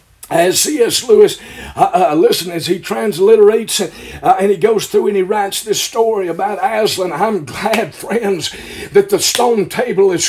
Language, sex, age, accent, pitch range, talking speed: English, male, 50-69, American, 225-265 Hz, 170 wpm